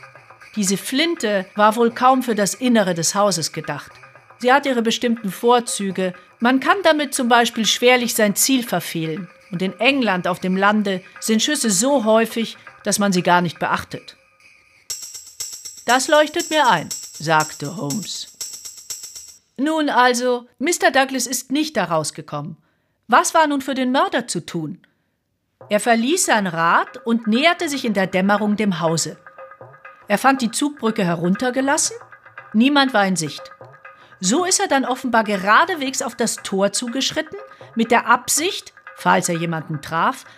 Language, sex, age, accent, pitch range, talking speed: German, female, 50-69, German, 190-265 Hz, 150 wpm